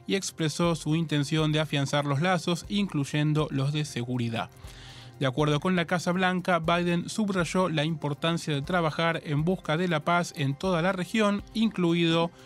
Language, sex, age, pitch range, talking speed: Spanish, male, 20-39, 140-180 Hz, 165 wpm